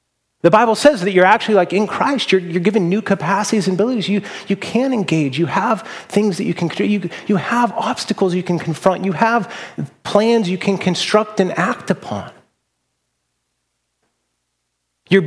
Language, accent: English, American